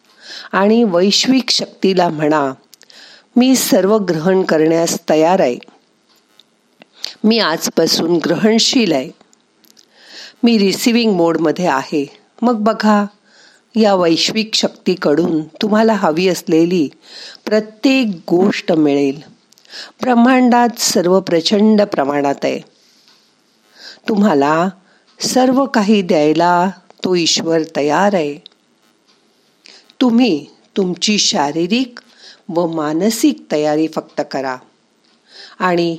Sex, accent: female, native